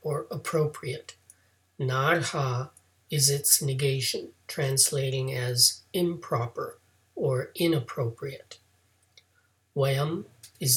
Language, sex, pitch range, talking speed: English, male, 115-155 Hz, 70 wpm